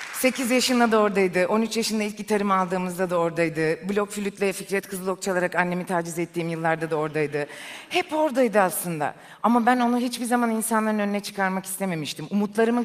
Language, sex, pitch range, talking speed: Turkish, female, 185-230 Hz, 165 wpm